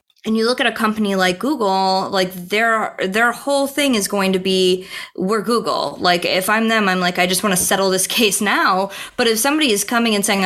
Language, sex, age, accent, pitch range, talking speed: English, female, 20-39, American, 180-220 Hz, 230 wpm